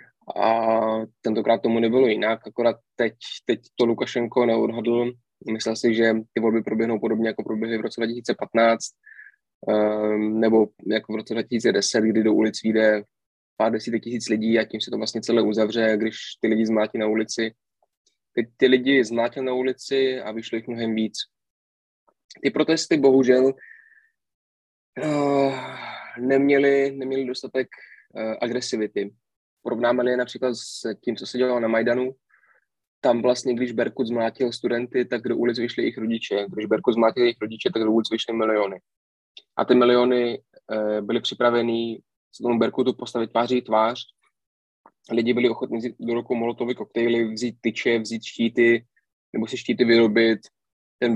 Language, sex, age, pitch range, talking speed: Slovak, male, 20-39, 110-125 Hz, 150 wpm